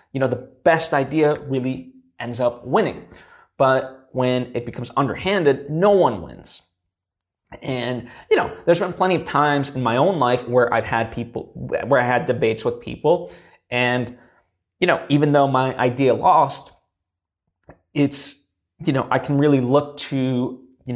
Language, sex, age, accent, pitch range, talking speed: English, male, 20-39, American, 120-150 Hz, 160 wpm